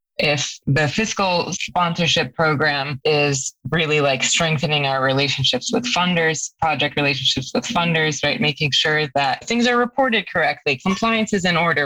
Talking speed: 145 wpm